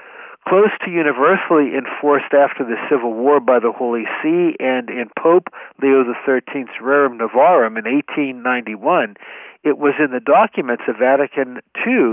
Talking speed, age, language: 145 wpm, 60-79, English